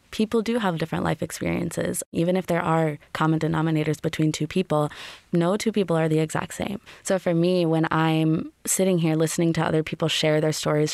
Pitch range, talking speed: 155-175 Hz, 200 wpm